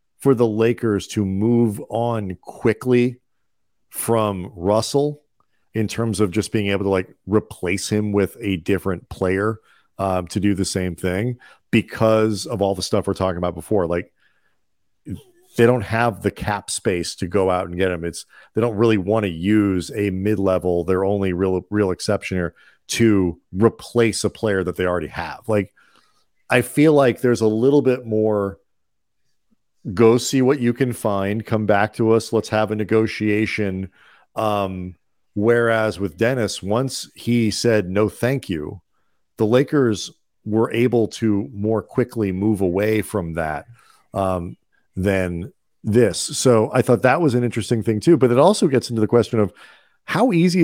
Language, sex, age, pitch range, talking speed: English, male, 40-59, 95-115 Hz, 165 wpm